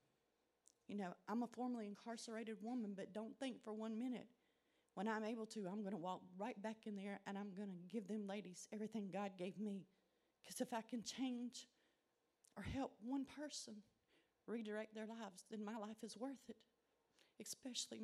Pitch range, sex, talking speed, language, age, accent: 205-245 Hz, female, 185 wpm, English, 40-59, American